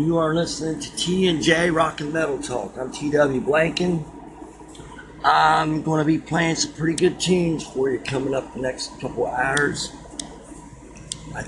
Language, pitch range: English, 145-170 Hz